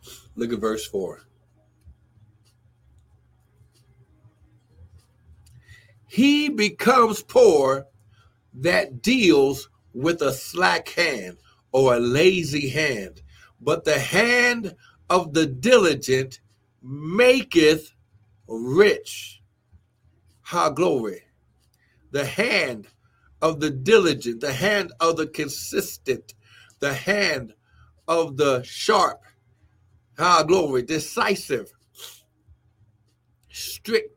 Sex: male